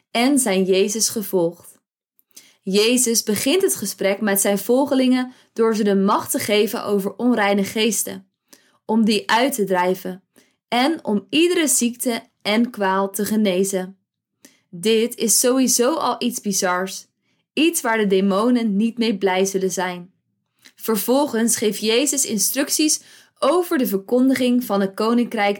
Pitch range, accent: 195-245 Hz, Dutch